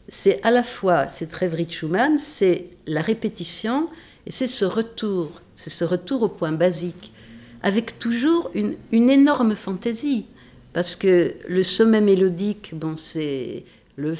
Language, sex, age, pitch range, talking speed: French, female, 50-69, 170-245 Hz, 145 wpm